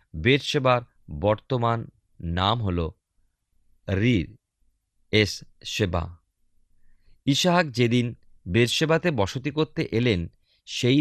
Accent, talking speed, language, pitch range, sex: native, 75 wpm, Bengali, 95-130 Hz, male